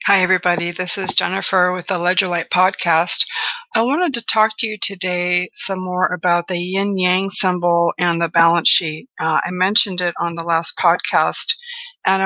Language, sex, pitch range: English, female, 180-210 Hz